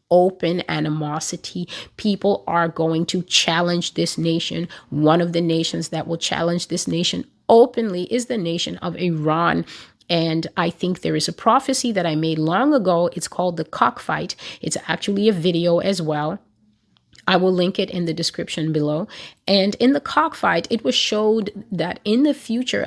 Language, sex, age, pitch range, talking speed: English, female, 30-49, 165-205 Hz, 170 wpm